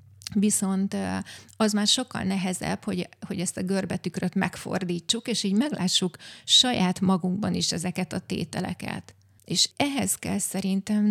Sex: female